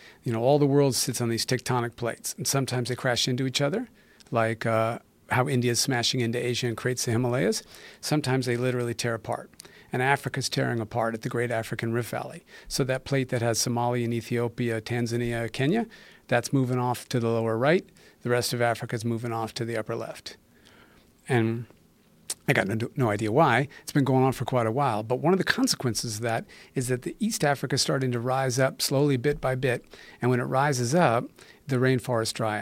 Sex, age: male, 40-59